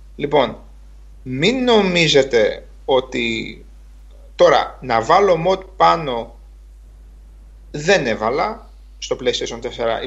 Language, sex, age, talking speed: Greek, male, 30-49, 85 wpm